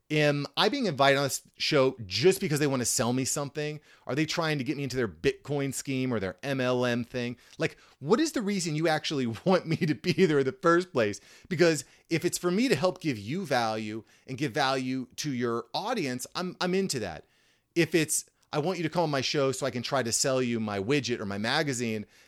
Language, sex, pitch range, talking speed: English, male, 120-155 Hz, 230 wpm